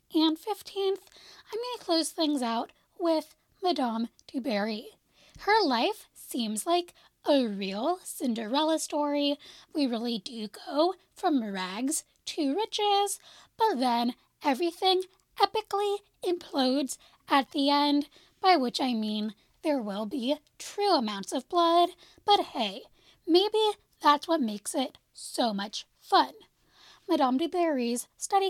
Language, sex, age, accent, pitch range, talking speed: English, female, 10-29, American, 245-355 Hz, 125 wpm